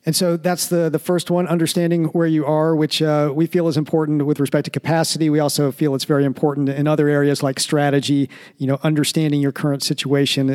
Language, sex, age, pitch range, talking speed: English, male, 40-59, 140-160 Hz, 215 wpm